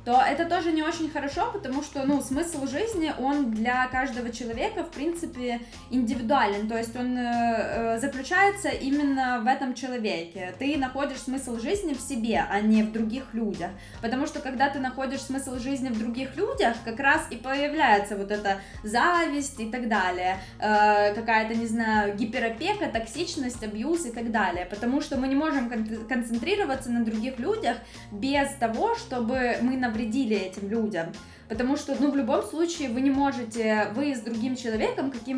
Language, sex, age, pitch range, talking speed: Ukrainian, female, 10-29, 230-275 Hz, 165 wpm